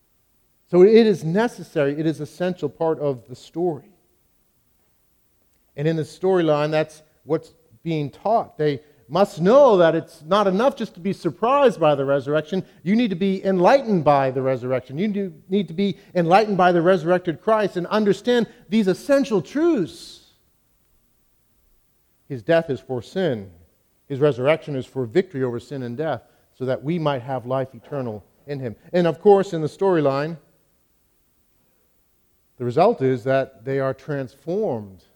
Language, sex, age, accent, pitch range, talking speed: English, male, 40-59, American, 135-190 Hz, 155 wpm